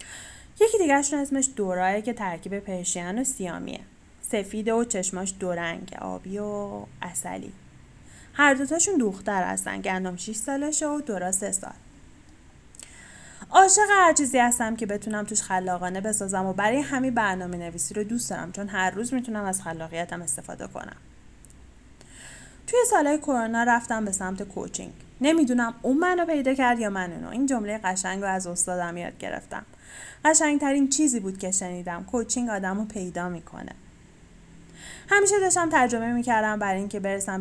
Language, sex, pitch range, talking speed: Persian, female, 185-245 Hz, 145 wpm